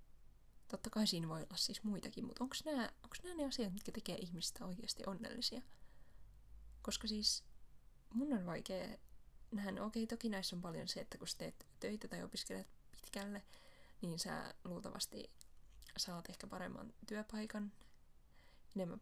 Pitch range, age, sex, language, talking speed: 185-230 Hz, 20-39, female, Finnish, 145 wpm